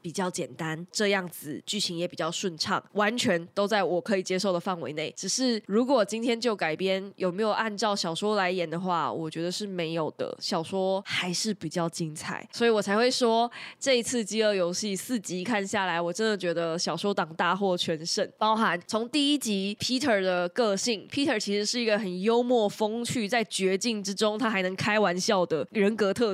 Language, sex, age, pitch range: Chinese, female, 20-39, 175-225 Hz